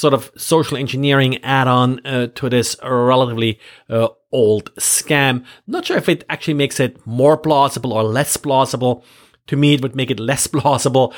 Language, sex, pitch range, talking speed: English, male, 120-155 Hz, 165 wpm